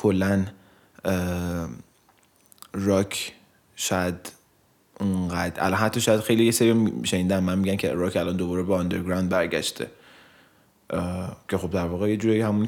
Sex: male